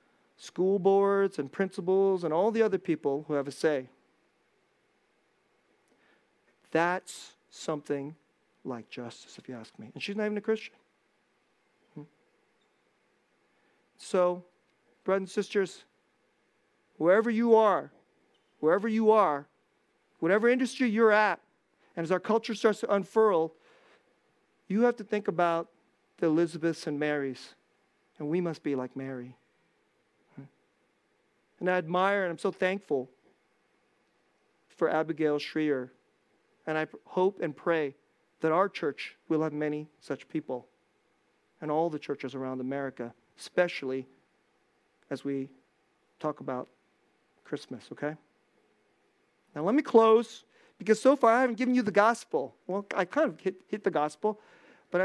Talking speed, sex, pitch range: 130 wpm, male, 150-210 Hz